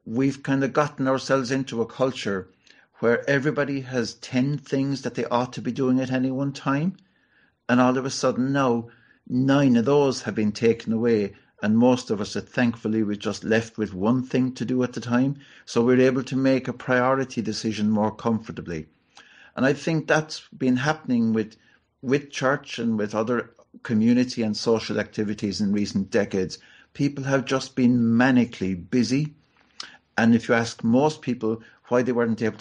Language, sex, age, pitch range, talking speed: English, male, 60-79, 110-135 Hz, 180 wpm